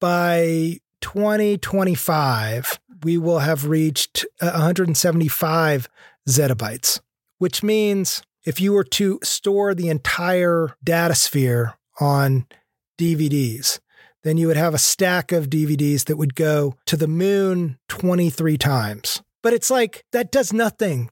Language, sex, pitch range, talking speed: English, male, 150-185 Hz, 120 wpm